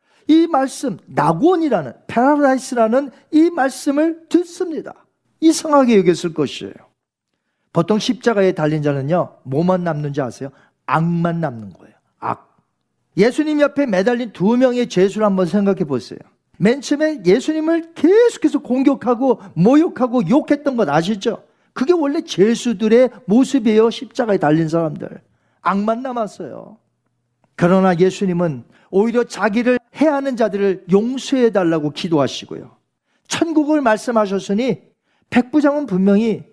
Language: Korean